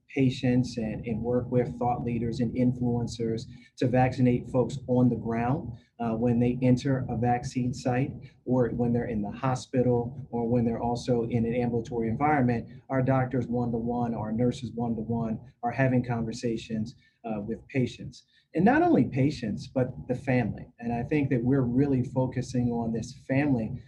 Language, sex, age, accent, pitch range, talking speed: English, male, 30-49, American, 115-130 Hz, 165 wpm